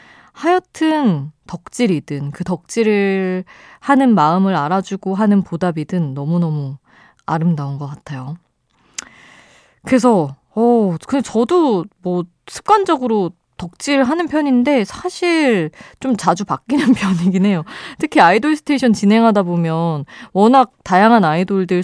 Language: Korean